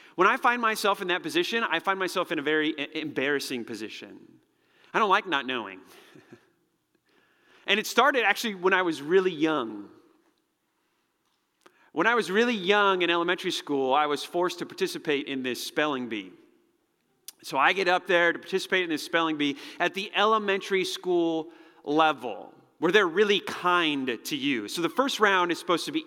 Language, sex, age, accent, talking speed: English, male, 30-49, American, 175 wpm